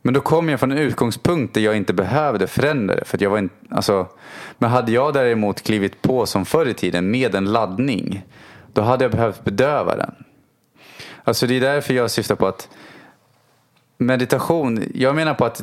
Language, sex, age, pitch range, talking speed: English, male, 20-39, 105-130 Hz, 190 wpm